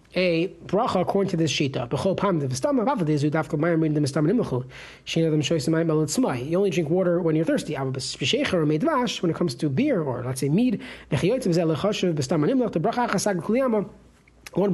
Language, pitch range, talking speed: English, 155-200 Hz, 95 wpm